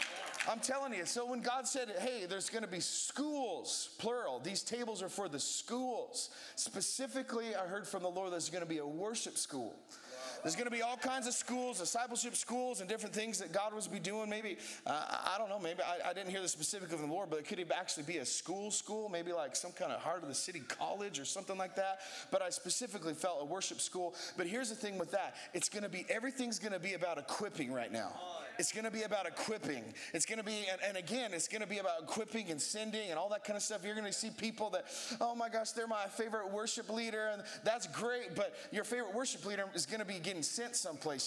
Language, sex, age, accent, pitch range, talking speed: English, male, 30-49, American, 180-230 Hz, 240 wpm